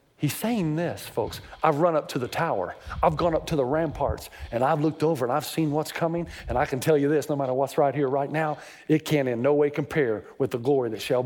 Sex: male